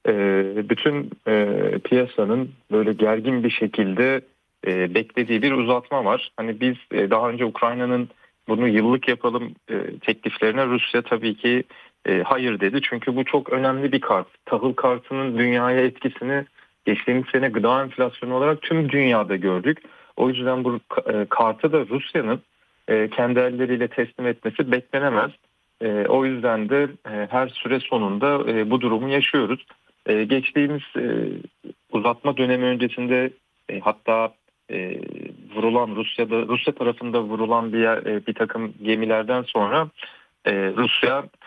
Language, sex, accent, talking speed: Turkish, male, native, 125 wpm